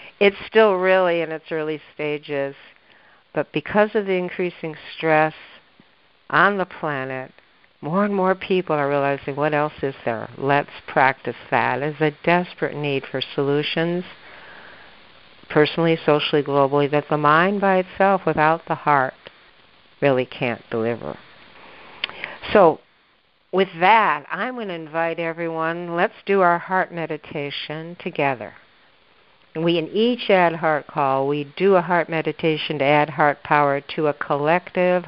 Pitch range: 145-185 Hz